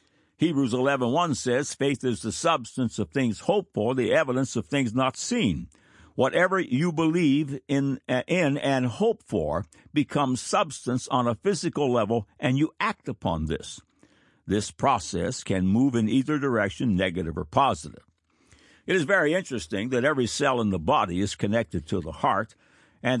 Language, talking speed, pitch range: English, 160 wpm, 105-150 Hz